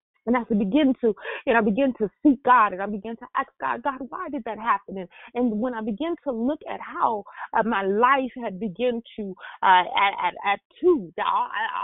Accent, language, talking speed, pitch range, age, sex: American, English, 220 wpm, 215-290 Hz, 30-49, female